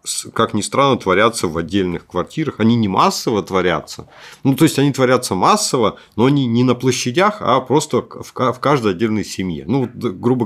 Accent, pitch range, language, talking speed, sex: native, 95-125 Hz, Russian, 170 wpm, male